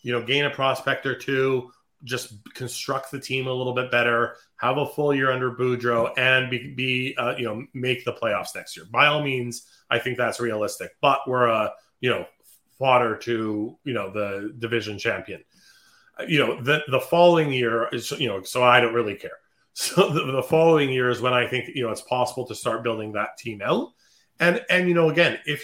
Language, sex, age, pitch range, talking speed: English, male, 30-49, 120-140 Hz, 210 wpm